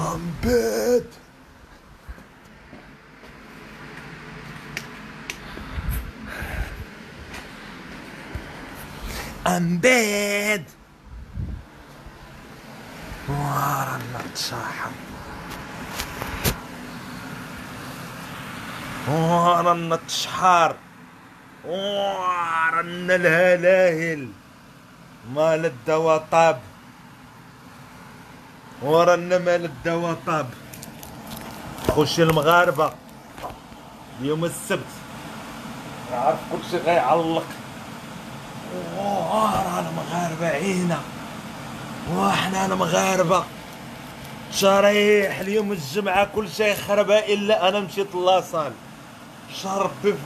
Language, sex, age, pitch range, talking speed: Arabic, male, 50-69, 155-200 Hz, 65 wpm